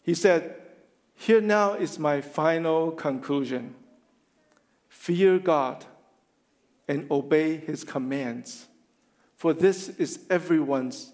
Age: 50-69